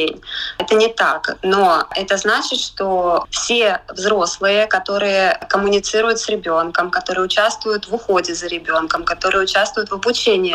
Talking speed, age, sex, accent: 135 wpm, 20-39, female, native